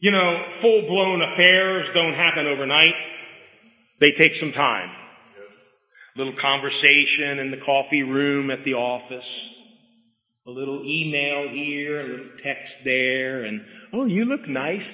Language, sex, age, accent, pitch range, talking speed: English, male, 40-59, American, 150-225 Hz, 135 wpm